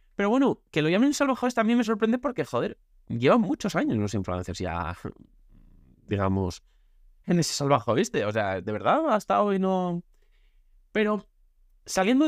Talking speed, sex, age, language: 150 wpm, male, 20-39, Spanish